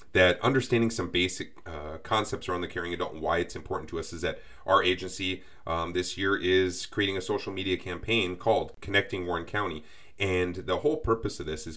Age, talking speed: 30-49, 205 wpm